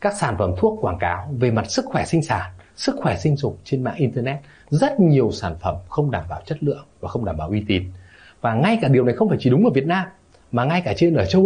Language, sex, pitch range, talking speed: Vietnamese, male, 110-165 Hz, 270 wpm